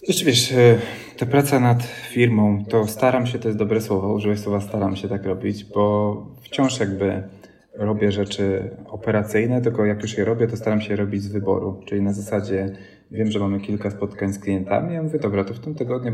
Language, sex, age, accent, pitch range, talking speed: Polish, male, 20-39, native, 100-110 Hz, 195 wpm